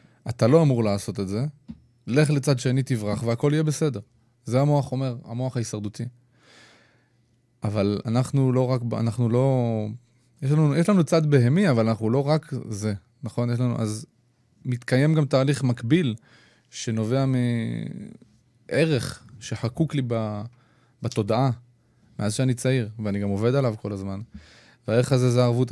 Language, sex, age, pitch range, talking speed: Hebrew, male, 20-39, 110-135 Hz, 140 wpm